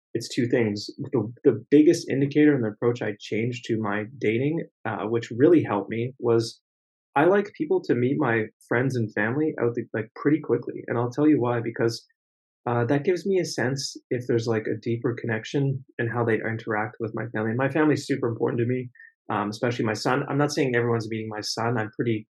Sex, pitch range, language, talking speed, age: male, 115-140 Hz, English, 210 wpm, 30-49